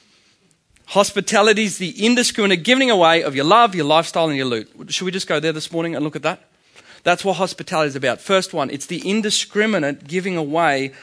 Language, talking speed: English, 200 wpm